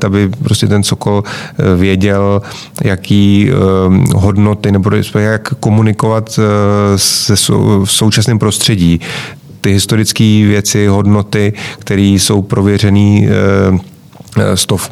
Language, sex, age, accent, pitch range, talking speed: Czech, male, 30-49, native, 100-110 Hz, 100 wpm